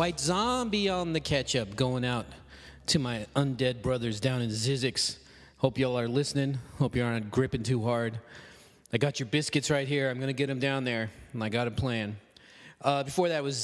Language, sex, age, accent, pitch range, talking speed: English, male, 30-49, American, 110-135 Hz, 200 wpm